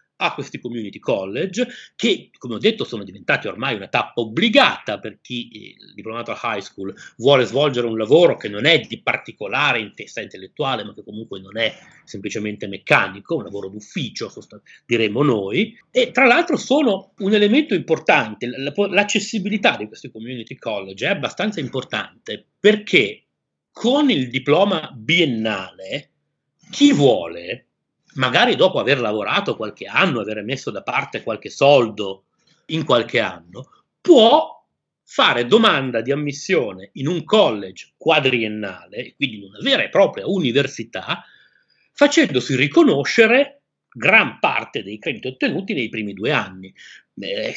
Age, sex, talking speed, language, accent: 30-49, male, 140 wpm, Italian, native